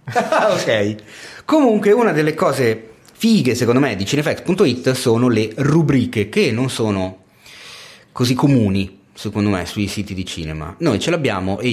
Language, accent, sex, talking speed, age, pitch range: Italian, native, male, 145 wpm, 30-49, 95-140 Hz